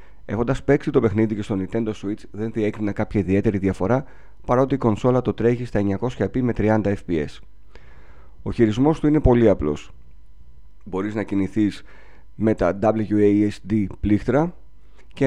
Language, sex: Greek, male